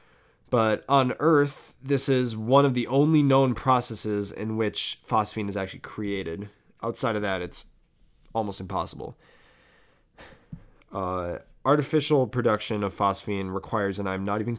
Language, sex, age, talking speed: English, male, 20-39, 135 wpm